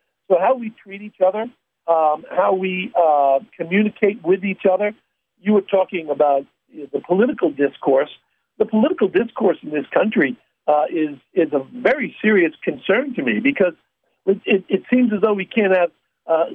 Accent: American